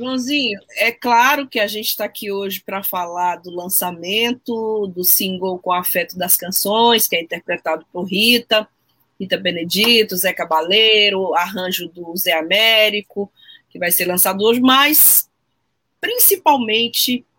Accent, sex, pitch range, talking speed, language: Brazilian, female, 190-235 Hz, 135 wpm, Portuguese